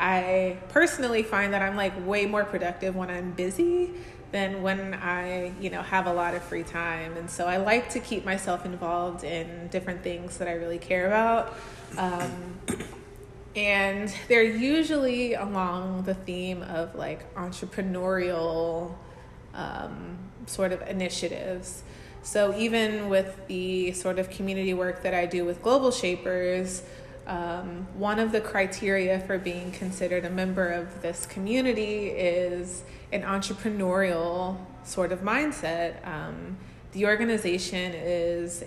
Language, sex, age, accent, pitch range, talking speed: English, female, 20-39, American, 175-200 Hz, 140 wpm